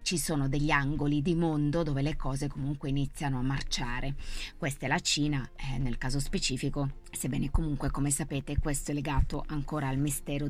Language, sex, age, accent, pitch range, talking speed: Italian, female, 20-39, native, 135-155 Hz, 175 wpm